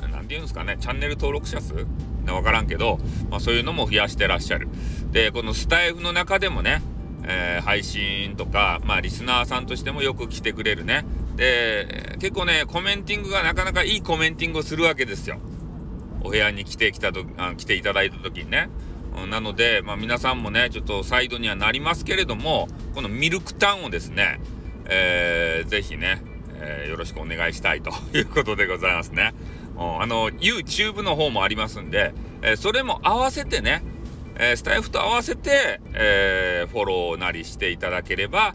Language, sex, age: Japanese, male, 40-59